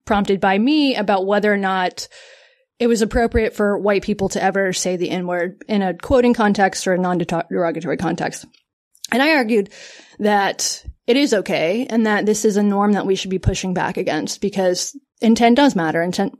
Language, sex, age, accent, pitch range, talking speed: English, female, 20-39, American, 190-245 Hz, 185 wpm